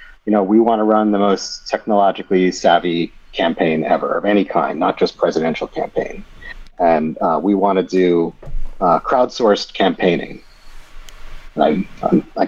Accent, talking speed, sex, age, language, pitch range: American, 150 wpm, male, 40-59, Hebrew, 95-115 Hz